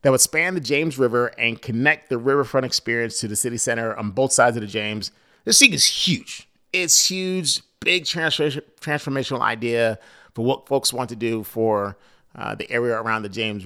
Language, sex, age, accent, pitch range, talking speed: English, male, 30-49, American, 110-145 Hz, 190 wpm